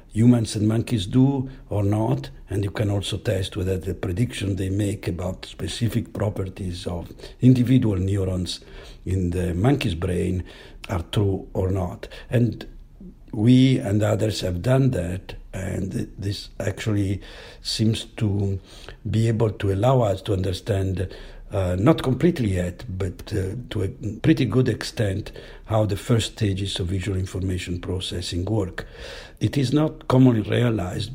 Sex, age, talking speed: male, 60-79, 145 wpm